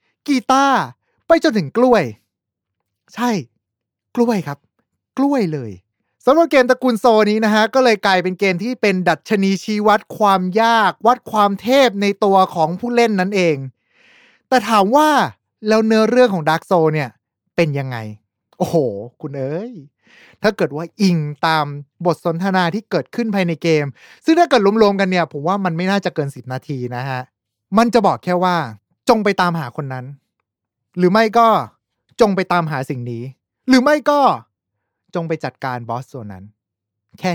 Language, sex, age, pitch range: Thai, male, 20-39, 150-220 Hz